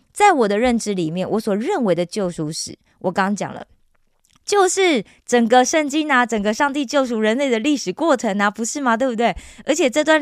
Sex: female